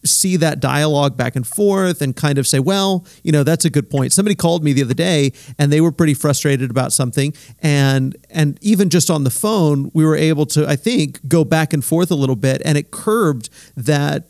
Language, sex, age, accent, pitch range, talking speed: English, male, 40-59, American, 135-165 Hz, 225 wpm